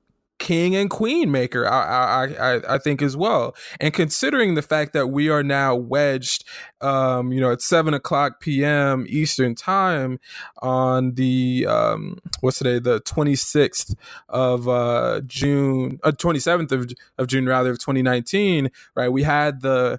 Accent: American